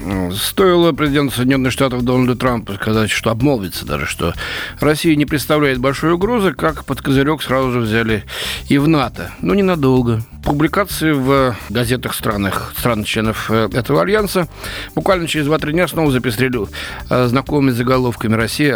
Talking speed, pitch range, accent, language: 140 wpm, 110-160 Hz, native, Russian